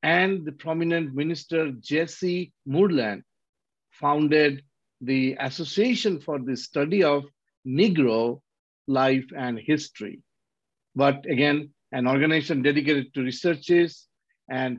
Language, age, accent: English, 50-69, Indian